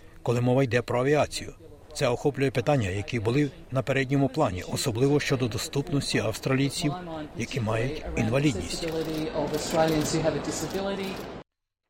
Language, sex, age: Ukrainian, male, 60-79